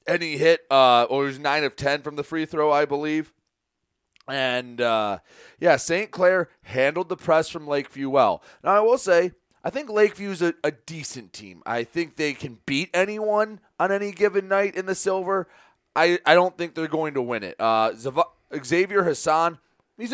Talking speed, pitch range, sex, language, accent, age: 190 wpm, 135-180 Hz, male, English, American, 30-49